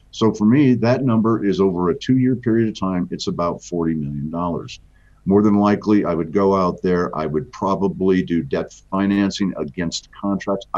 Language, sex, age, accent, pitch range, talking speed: English, male, 50-69, American, 80-105 Hz, 185 wpm